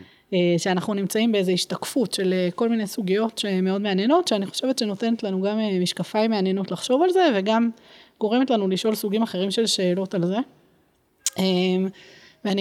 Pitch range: 185-230 Hz